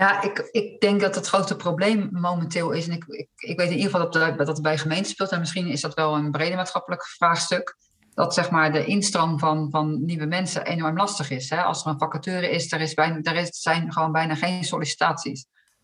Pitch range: 155-185 Hz